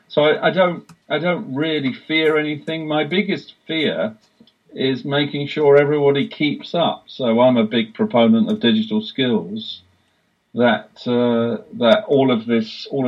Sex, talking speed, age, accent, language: male, 150 wpm, 40-59, British, English